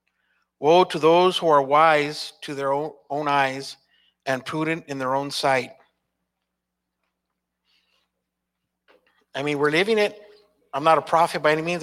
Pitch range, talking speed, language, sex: 135-165 Hz, 140 wpm, English, male